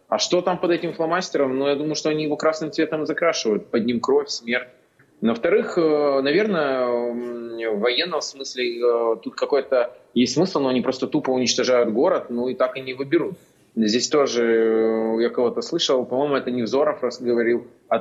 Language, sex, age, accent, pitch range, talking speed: Russian, male, 20-39, native, 120-160 Hz, 175 wpm